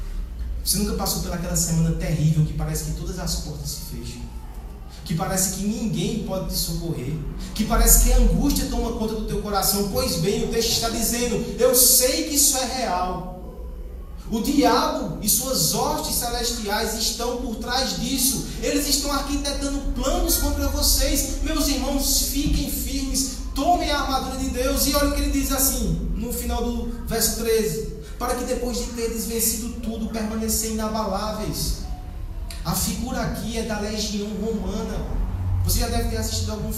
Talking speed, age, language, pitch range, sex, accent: 170 wpm, 20-39, Portuguese, 175-250 Hz, male, Brazilian